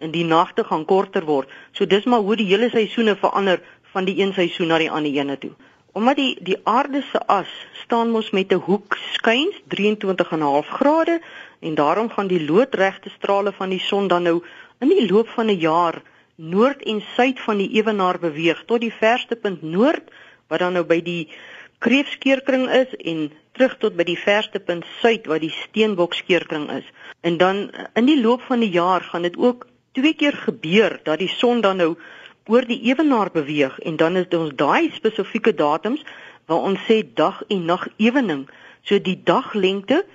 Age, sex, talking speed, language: 50-69, female, 185 wpm, Dutch